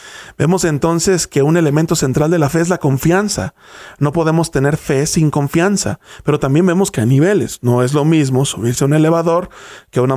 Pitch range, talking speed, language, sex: 135-170 Hz, 205 wpm, English, male